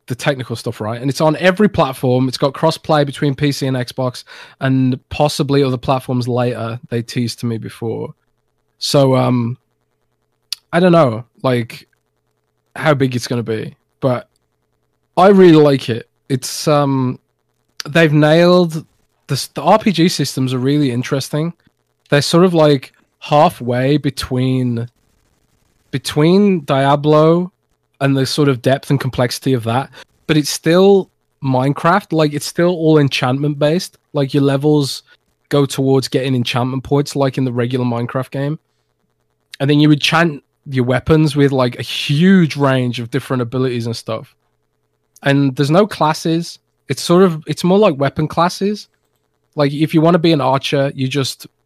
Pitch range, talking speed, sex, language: 120-155 Hz, 155 wpm, male, English